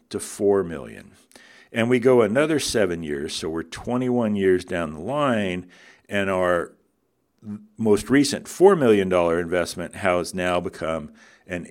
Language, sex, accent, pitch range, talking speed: English, male, American, 85-130 Hz, 145 wpm